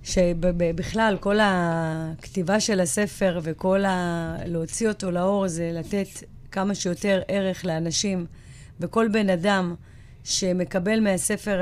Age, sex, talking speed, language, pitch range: 30-49, female, 110 wpm, Hebrew, 180-215 Hz